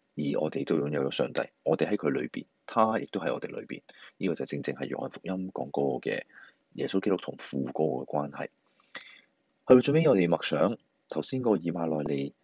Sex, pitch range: male, 75-100 Hz